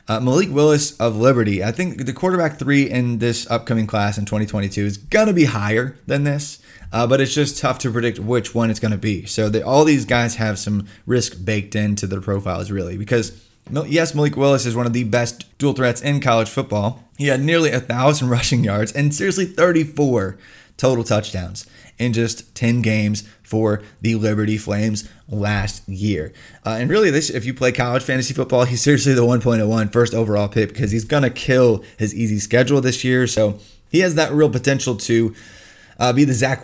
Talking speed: 200 wpm